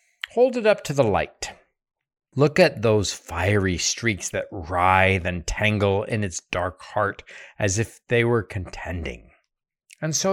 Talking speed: 150 wpm